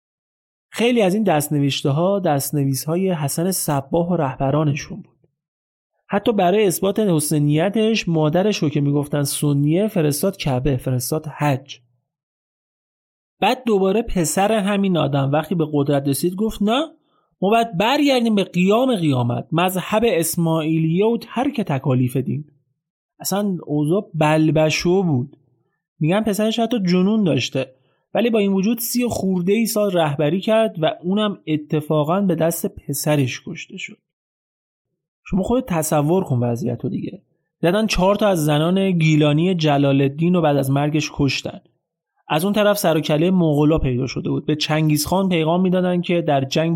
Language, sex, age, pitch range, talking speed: Persian, male, 30-49, 150-195 Hz, 140 wpm